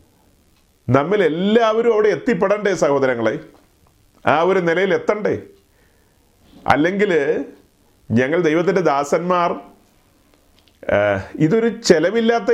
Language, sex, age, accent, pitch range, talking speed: Malayalam, male, 30-49, native, 155-215 Hz, 70 wpm